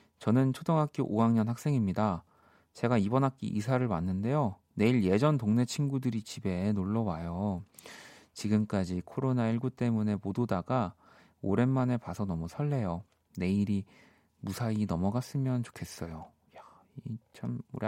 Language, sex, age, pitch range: Korean, male, 30-49, 95-125 Hz